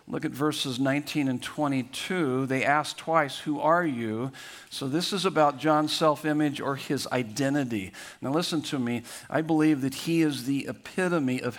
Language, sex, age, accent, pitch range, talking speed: English, male, 50-69, American, 135-170 Hz, 170 wpm